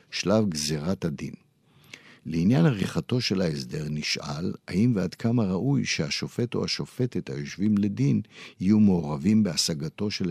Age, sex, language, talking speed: 60-79, male, Hebrew, 120 wpm